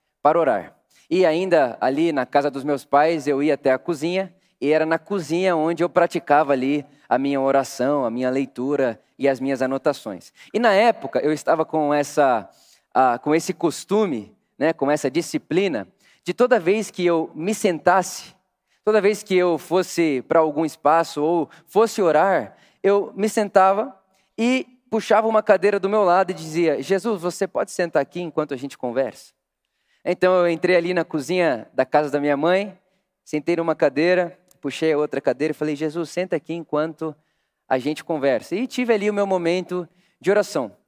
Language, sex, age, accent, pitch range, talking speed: Portuguese, male, 20-39, Brazilian, 150-185 Hz, 175 wpm